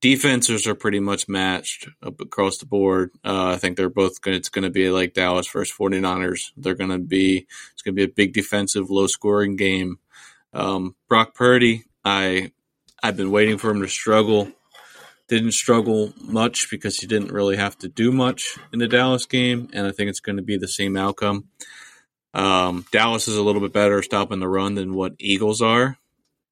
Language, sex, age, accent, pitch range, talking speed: English, male, 30-49, American, 95-115 Hz, 200 wpm